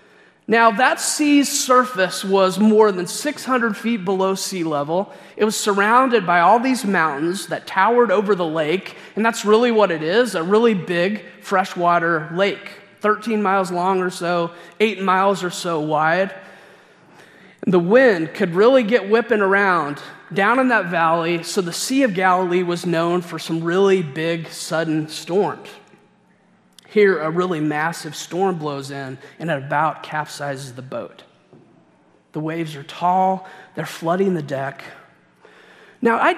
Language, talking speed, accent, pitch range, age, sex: English, 150 wpm, American, 165-215 Hz, 30-49, male